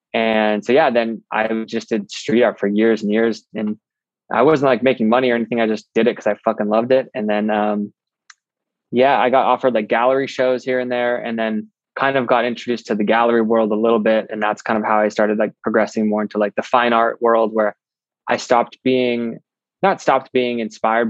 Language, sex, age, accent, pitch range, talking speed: English, male, 20-39, American, 105-120 Hz, 230 wpm